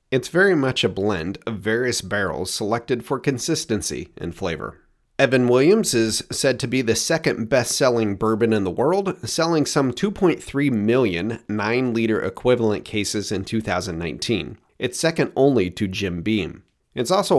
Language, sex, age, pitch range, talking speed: English, male, 30-49, 105-140 Hz, 150 wpm